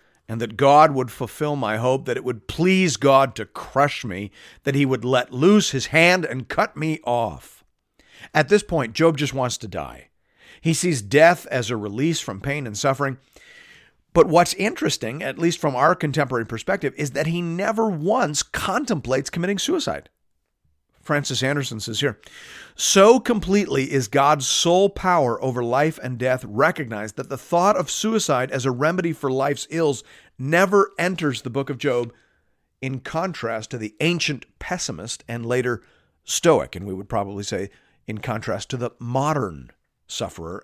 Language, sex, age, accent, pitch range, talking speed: English, male, 40-59, American, 120-165 Hz, 165 wpm